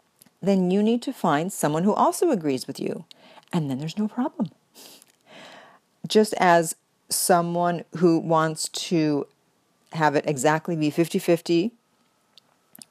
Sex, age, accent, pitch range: female, 40-59, American, 150-200 Hz